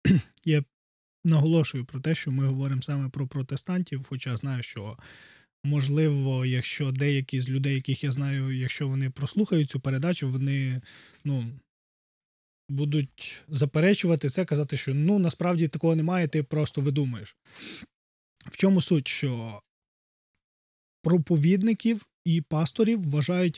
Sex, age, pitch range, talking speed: male, 20-39, 140-190 Hz, 120 wpm